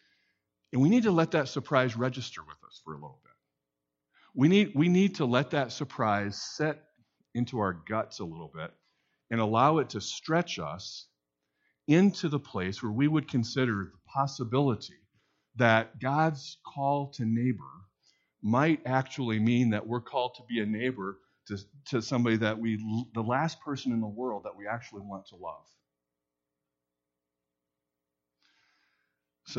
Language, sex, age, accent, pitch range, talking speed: English, male, 50-69, American, 85-130 Hz, 155 wpm